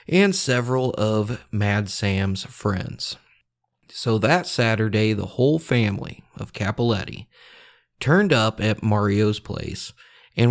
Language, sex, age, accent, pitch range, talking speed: English, male, 30-49, American, 100-135 Hz, 115 wpm